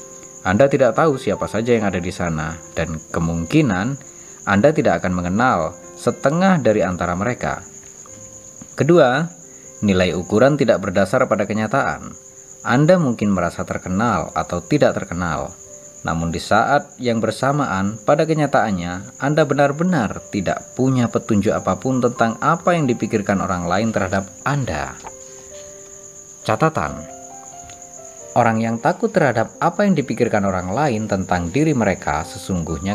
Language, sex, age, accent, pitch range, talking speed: Indonesian, male, 30-49, native, 90-130 Hz, 125 wpm